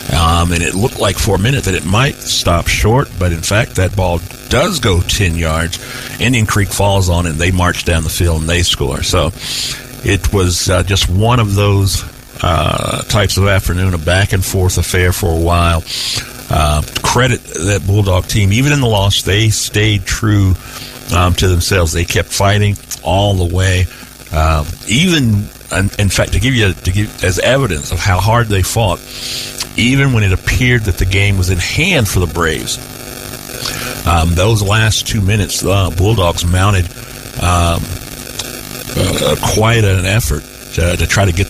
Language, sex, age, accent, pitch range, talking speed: English, male, 60-79, American, 90-115 Hz, 175 wpm